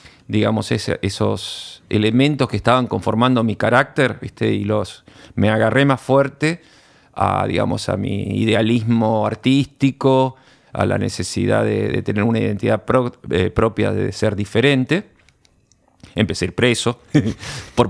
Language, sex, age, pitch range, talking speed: Spanish, male, 40-59, 105-125 Hz, 135 wpm